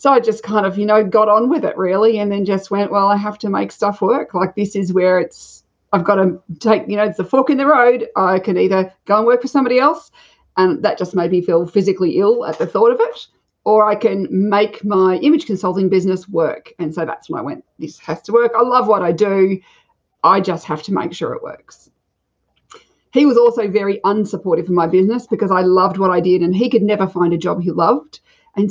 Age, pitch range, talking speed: 40-59, 185-235 Hz, 245 wpm